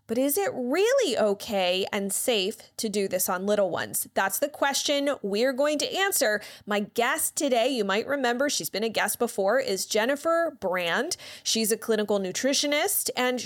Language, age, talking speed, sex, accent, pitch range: English, 30-49, 175 wpm, female, American, 200-280 Hz